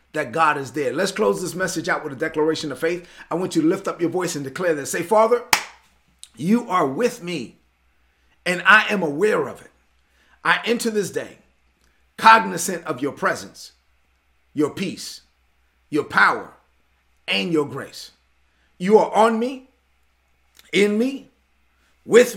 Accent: American